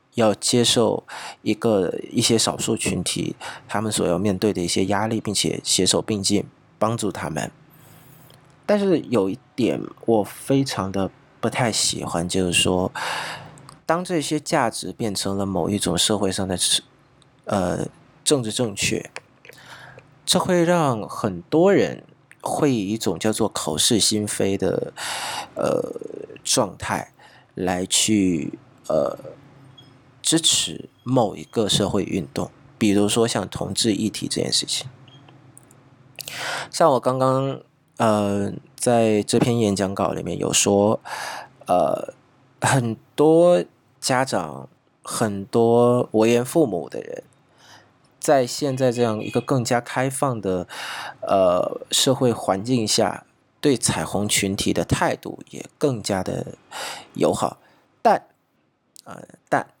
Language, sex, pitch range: Vietnamese, male, 100-135 Hz